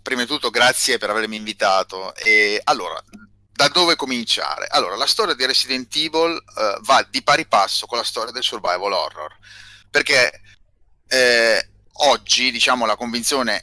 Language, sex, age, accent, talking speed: Italian, male, 30-49, native, 155 wpm